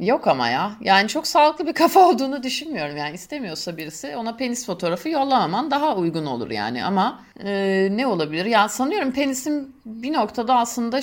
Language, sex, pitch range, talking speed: Turkish, female, 160-230 Hz, 170 wpm